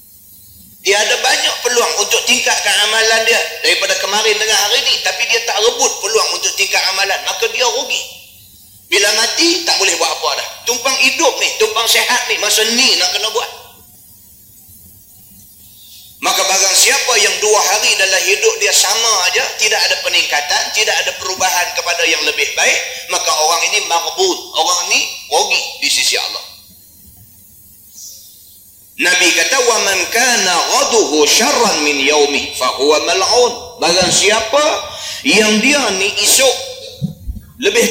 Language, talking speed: Malay, 140 wpm